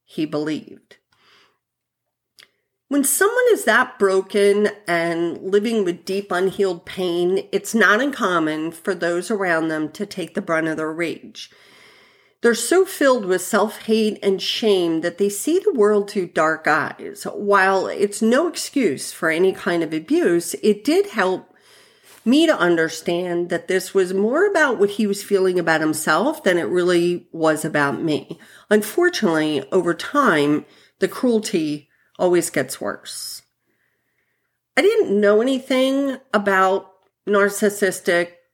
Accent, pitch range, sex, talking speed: American, 170-215 Hz, female, 135 wpm